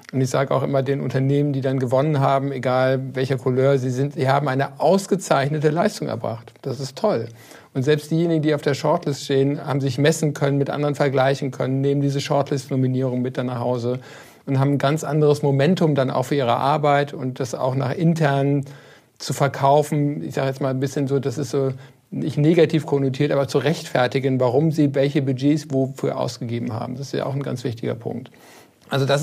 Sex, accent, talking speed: male, German, 205 wpm